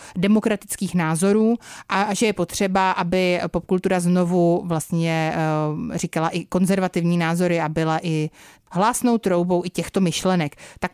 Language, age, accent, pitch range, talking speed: Czech, 30-49, native, 180-215 Hz, 125 wpm